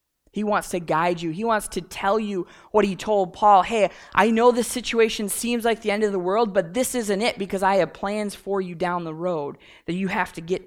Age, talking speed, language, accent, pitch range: 20-39, 245 wpm, English, American, 165-215 Hz